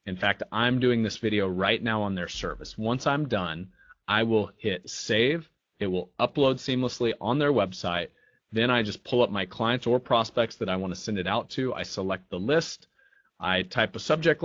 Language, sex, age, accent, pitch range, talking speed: English, male, 30-49, American, 95-120 Hz, 210 wpm